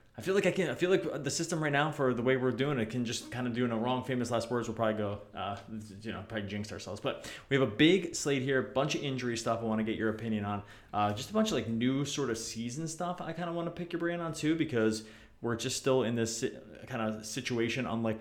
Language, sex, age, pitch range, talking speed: English, male, 20-39, 110-130 Hz, 295 wpm